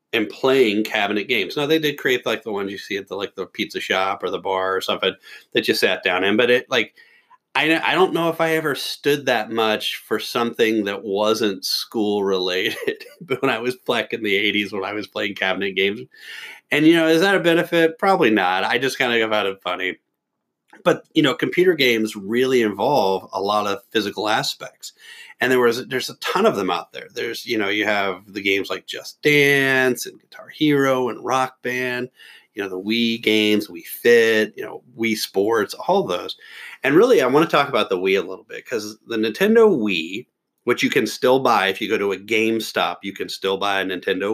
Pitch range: 100-165 Hz